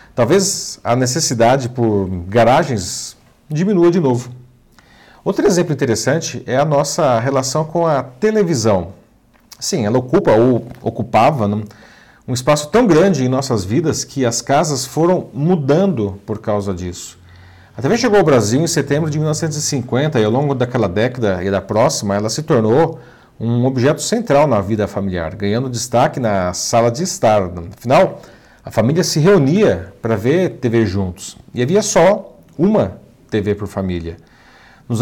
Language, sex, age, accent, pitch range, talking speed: Portuguese, male, 40-59, Brazilian, 110-145 Hz, 150 wpm